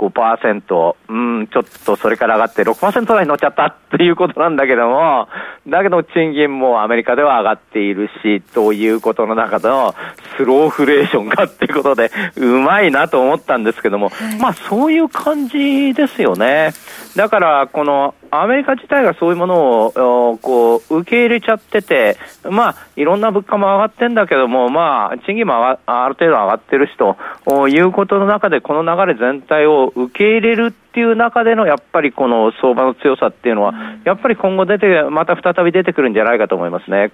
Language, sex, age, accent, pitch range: Japanese, male, 40-59, native, 130-220 Hz